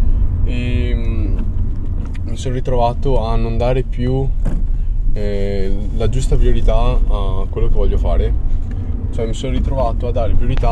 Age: 20-39